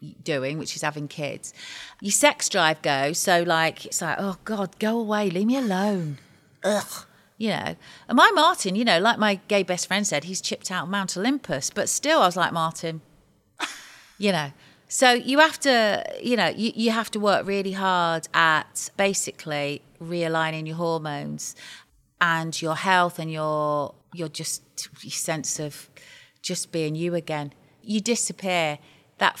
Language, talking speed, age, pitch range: English, 165 wpm, 40-59, 155-195 Hz